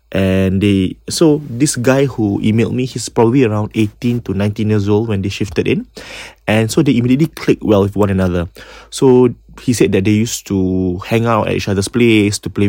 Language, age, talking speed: English, 20-39, 210 wpm